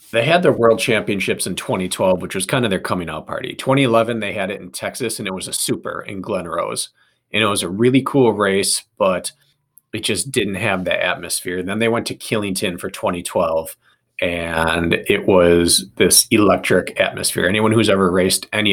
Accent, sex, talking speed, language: American, male, 200 wpm, English